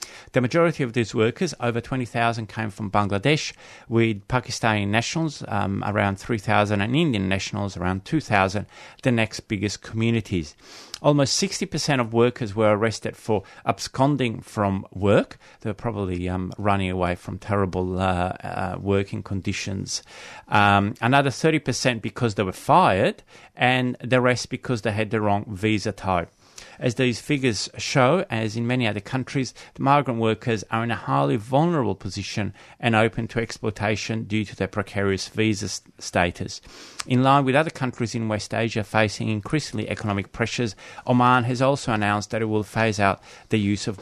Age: 30-49